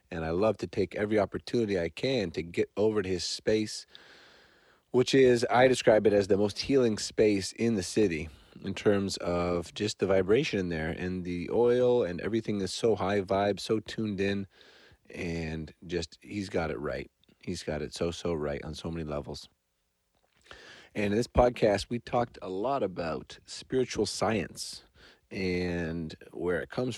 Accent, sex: American, male